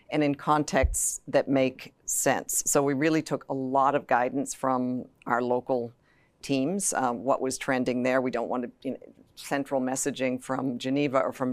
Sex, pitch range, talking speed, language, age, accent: female, 130-150 Hz, 180 wpm, English, 50-69, American